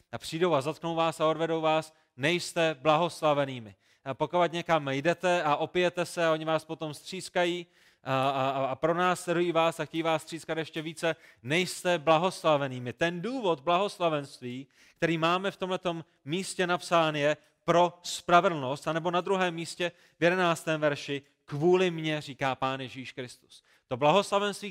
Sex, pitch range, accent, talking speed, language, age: male, 140-175 Hz, native, 150 wpm, Czech, 30-49